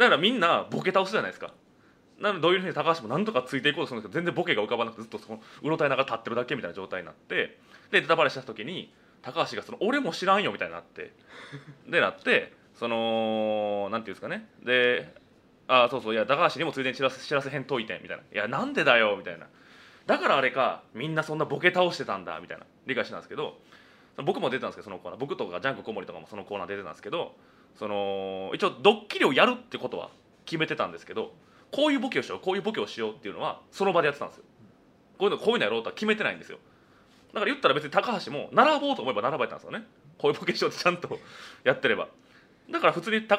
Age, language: 20-39, Japanese